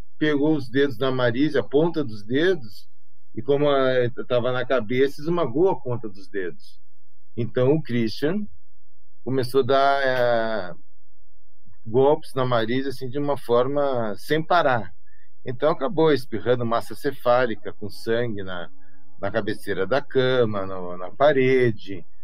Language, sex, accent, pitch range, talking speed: Portuguese, male, Brazilian, 100-135 Hz, 135 wpm